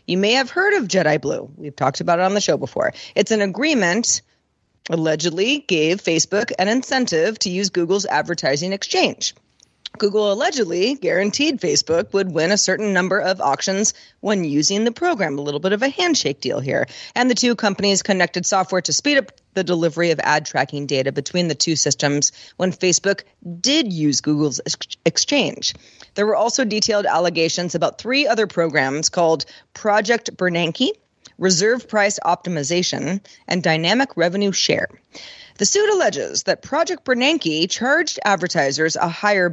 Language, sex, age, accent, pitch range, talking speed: English, female, 30-49, American, 165-220 Hz, 160 wpm